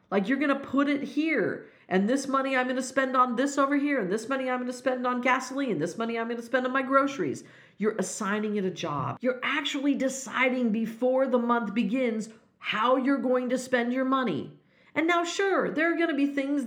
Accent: American